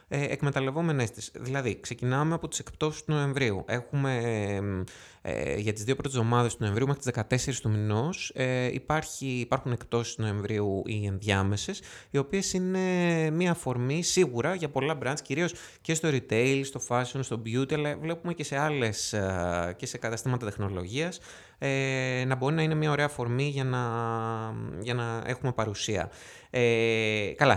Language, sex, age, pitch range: Greek, male, 20-39, 105-135 Hz